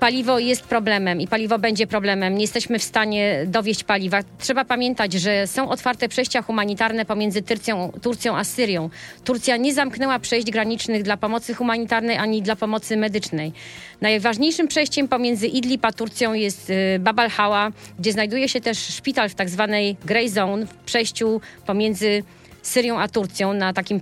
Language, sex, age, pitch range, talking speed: Polish, female, 40-59, 205-245 Hz, 155 wpm